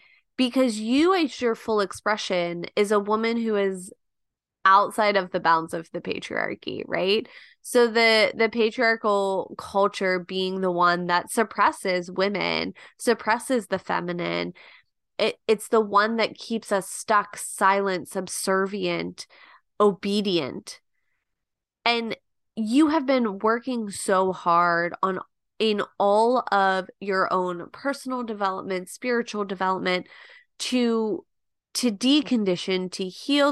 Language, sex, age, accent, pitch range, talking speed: English, female, 20-39, American, 180-225 Hz, 120 wpm